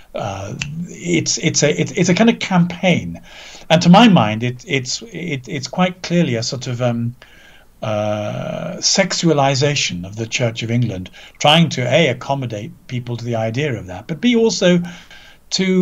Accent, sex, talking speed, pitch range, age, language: British, male, 165 wpm, 125-175 Hz, 50-69, English